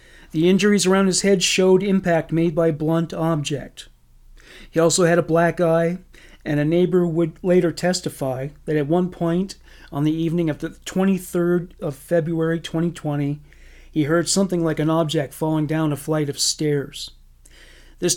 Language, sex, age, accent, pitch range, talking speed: English, male, 40-59, American, 150-180 Hz, 160 wpm